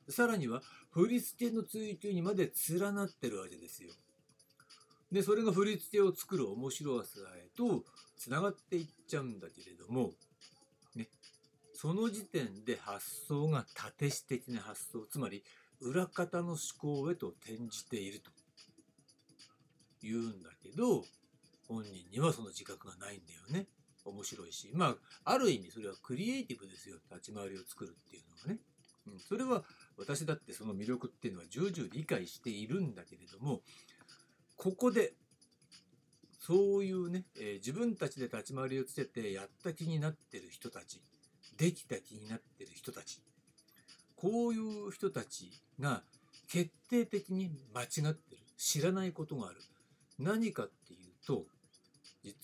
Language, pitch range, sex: Japanese, 120-190 Hz, male